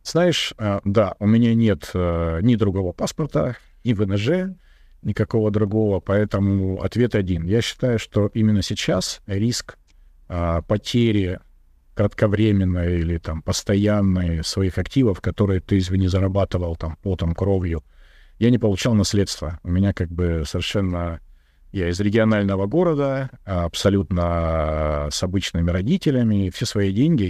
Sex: male